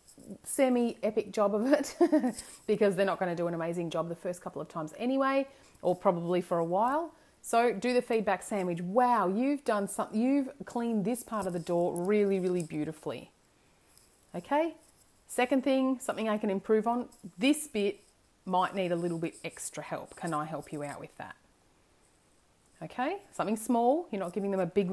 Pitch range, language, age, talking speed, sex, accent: 175-230 Hz, English, 30-49, 185 wpm, female, Australian